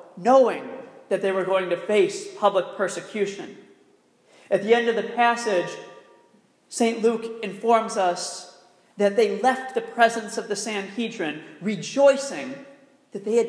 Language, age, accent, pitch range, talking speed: English, 40-59, American, 200-255 Hz, 140 wpm